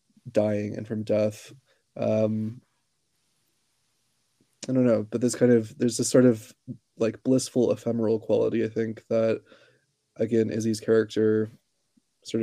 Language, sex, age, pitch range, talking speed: English, male, 20-39, 110-125 Hz, 130 wpm